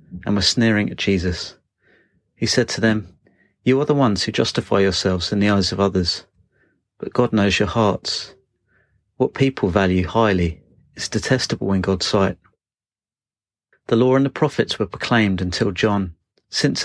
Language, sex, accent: English, male, British